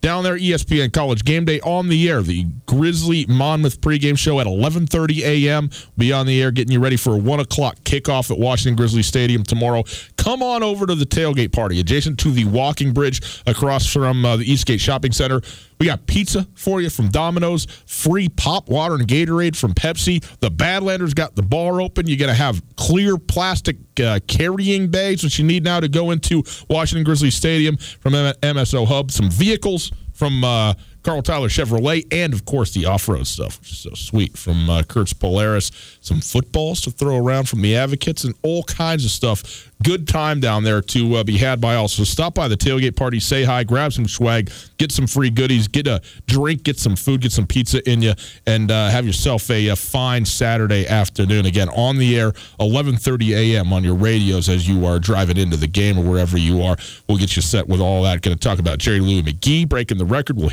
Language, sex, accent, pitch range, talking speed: English, male, American, 105-150 Hz, 210 wpm